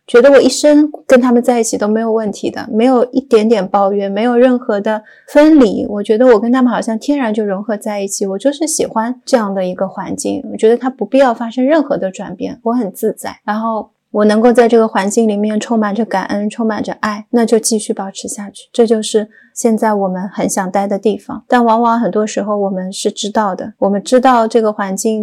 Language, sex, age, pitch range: Chinese, female, 20-39, 205-250 Hz